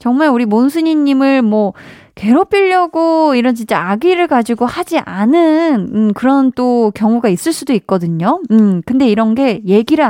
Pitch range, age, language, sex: 200-260 Hz, 20-39, Korean, female